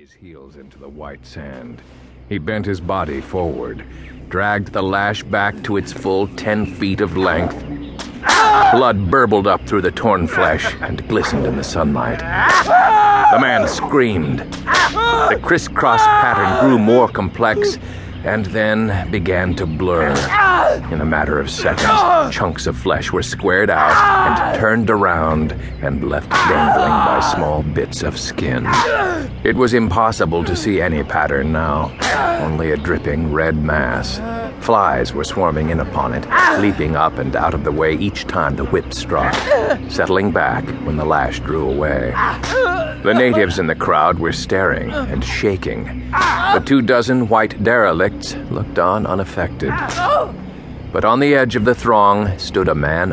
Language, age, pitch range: English, 50-69, 75-110 Hz